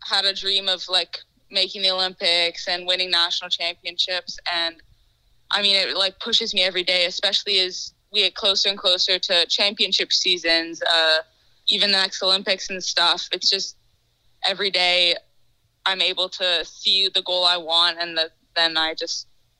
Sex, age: female, 20-39